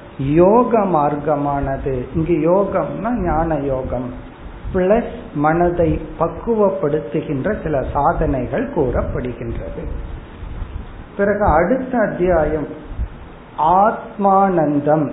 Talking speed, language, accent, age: 65 wpm, Tamil, native, 50-69